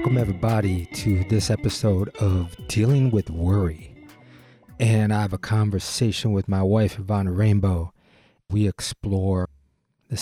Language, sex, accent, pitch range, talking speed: English, male, American, 95-110 Hz, 130 wpm